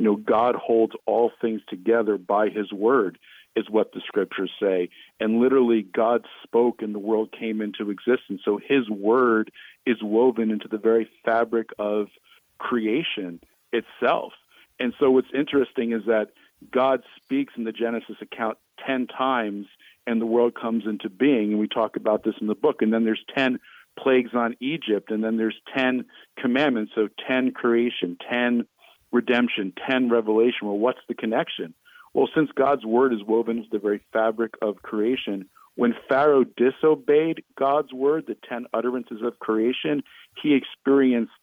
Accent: American